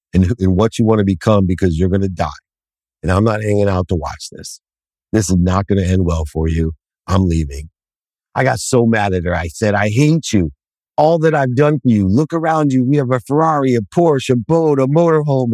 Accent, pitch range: American, 85-125 Hz